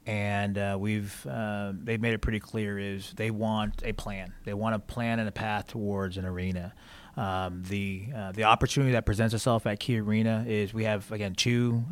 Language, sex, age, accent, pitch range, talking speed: English, male, 30-49, American, 105-120 Hz, 205 wpm